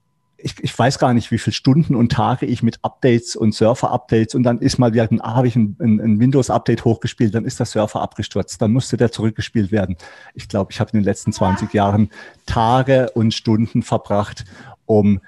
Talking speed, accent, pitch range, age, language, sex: 190 wpm, German, 105-125 Hz, 40-59, German, male